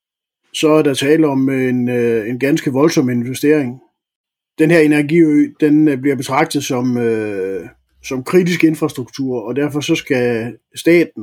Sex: male